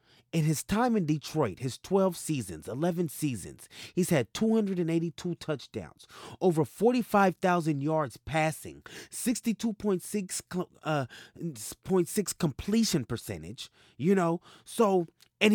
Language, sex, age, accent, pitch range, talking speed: English, male, 30-49, American, 145-195 Hz, 100 wpm